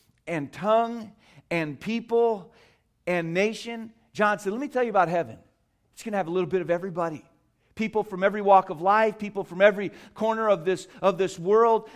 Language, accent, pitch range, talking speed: English, American, 150-220 Hz, 180 wpm